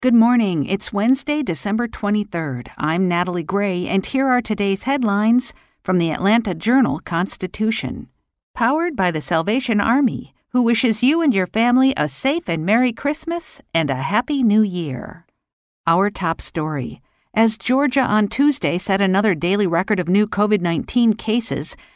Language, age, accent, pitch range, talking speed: English, 50-69, American, 180-235 Hz, 150 wpm